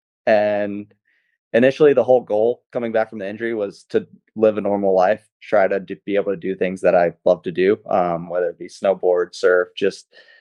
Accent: American